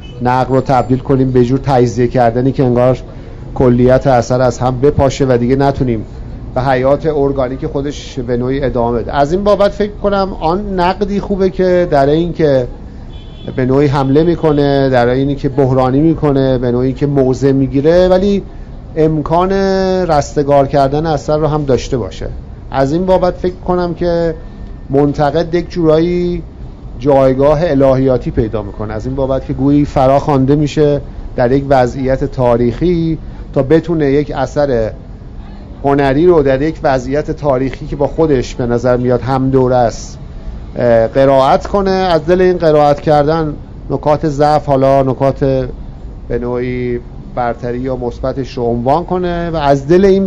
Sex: male